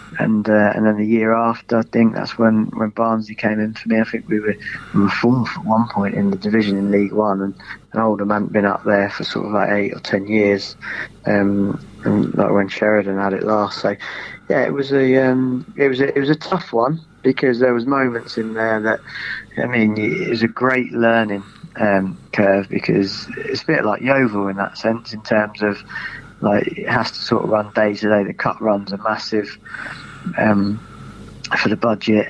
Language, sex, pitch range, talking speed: English, male, 105-115 Hz, 215 wpm